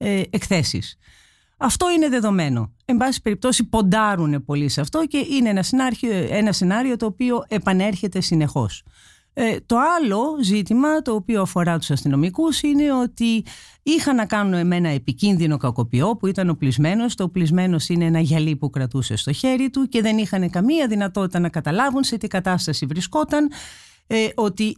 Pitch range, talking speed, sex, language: 155-240 Hz, 155 wpm, female, Greek